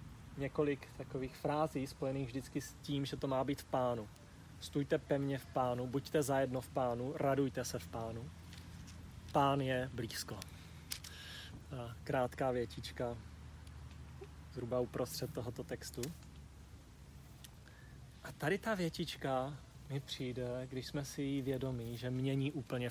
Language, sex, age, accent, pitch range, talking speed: Czech, male, 30-49, native, 120-145 Hz, 130 wpm